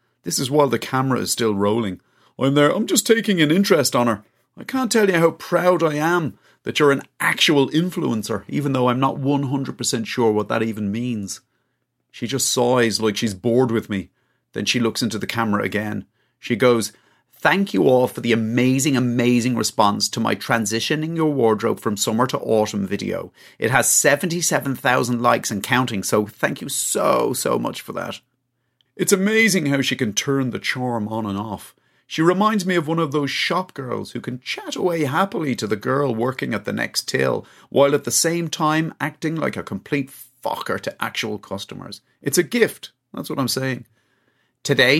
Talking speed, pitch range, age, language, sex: 190 wpm, 115-155 Hz, 30-49, English, male